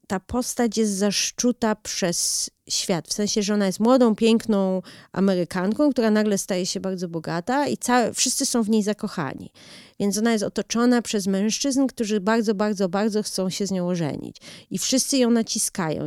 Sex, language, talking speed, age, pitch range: female, Polish, 170 wpm, 30-49, 175-220 Hz